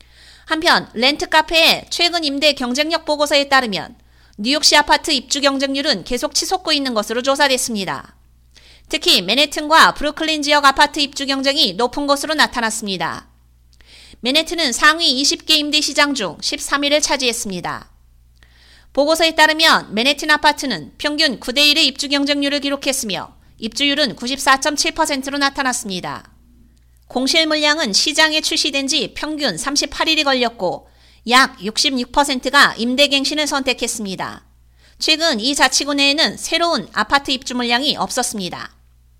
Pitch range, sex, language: 220-300 Hz, female, Korean